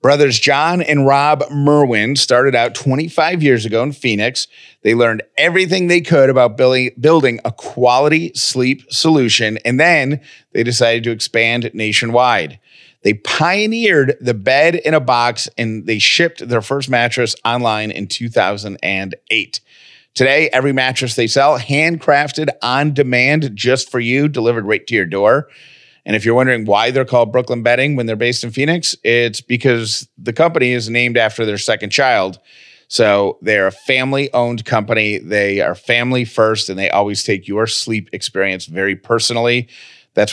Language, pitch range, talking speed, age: English, 110-135 Hz, 155 wpm, 30-49